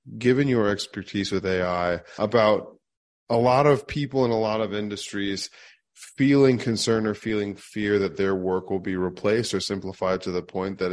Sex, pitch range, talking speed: male, 95-115 Hz, 175 wpm